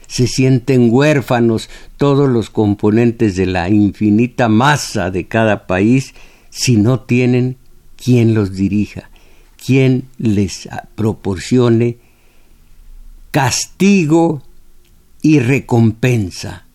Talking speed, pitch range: 90 wpm, 105-130 Hz